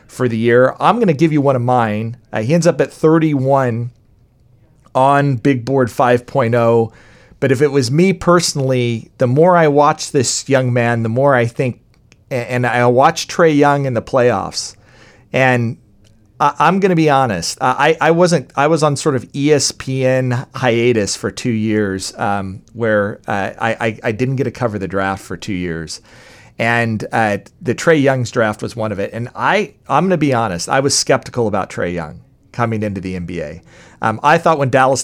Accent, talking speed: American, 190 wpm